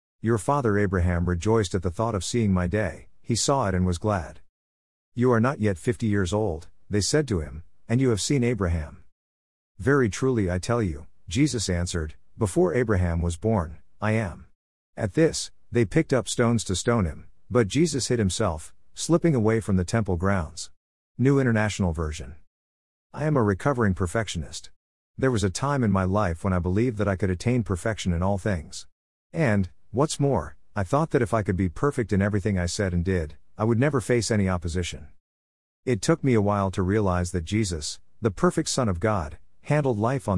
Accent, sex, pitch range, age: American, male, 90-115 Hz, 50-69